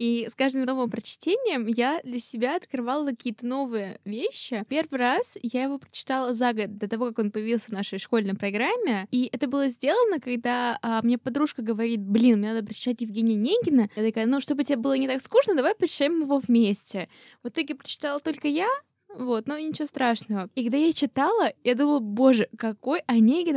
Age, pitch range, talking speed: 20-39, 220-275 Hz, 185 wpm